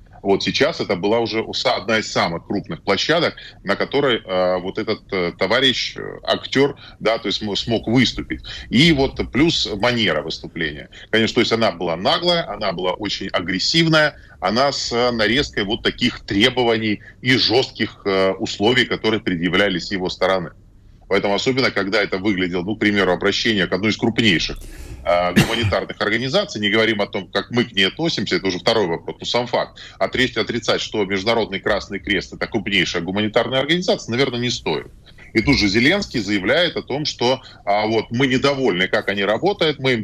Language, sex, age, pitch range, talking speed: Russian, male, 20-39, 100-130 Hz, 165 wpm